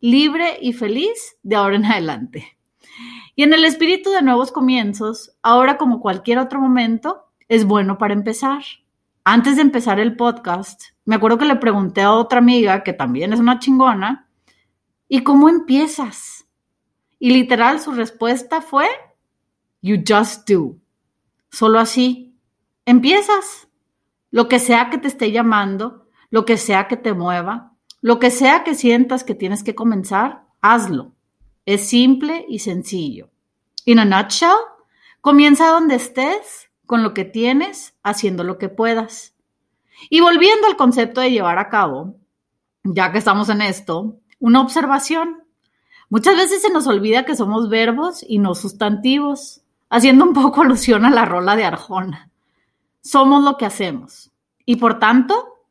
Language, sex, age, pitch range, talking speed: Spanish, female, 30-49, 215-285 Hz, 150 wpm